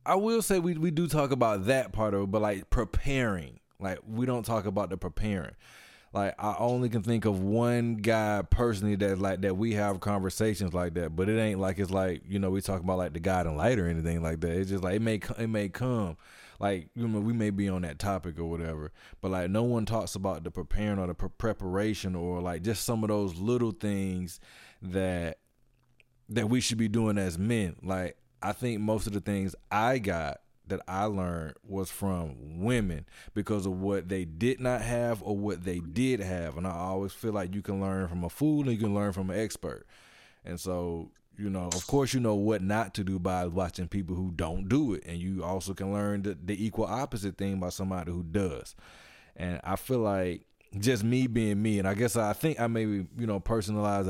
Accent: American